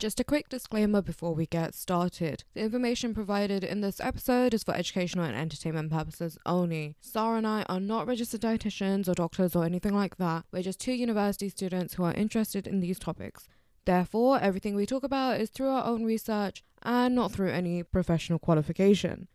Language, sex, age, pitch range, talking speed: English, female, 10-29, 180-225 Hz, 190 wpm